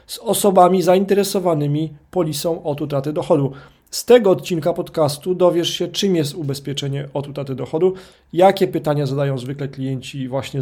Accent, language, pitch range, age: native, Polish, 145-185 Hz, 40-59